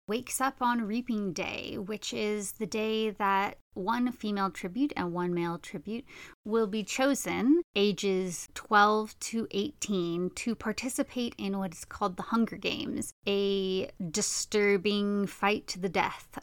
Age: 30-49